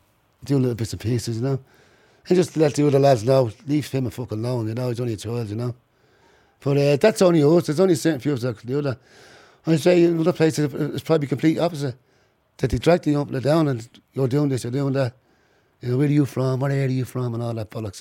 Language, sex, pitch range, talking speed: English, male, 105-140 Hz, 255 wpm